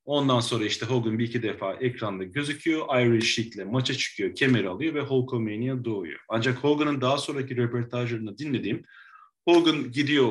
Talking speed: 150 wpm